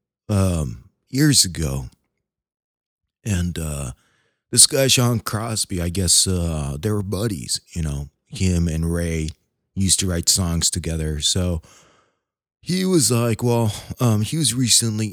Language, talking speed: English, 135 wpm